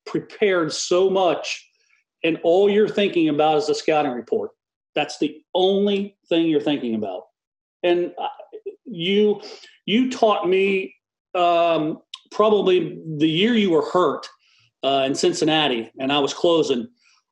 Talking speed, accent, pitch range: 130 wpm, American, 170-250 Hz